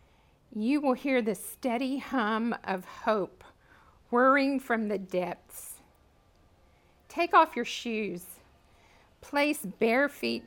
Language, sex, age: English, female, 50-69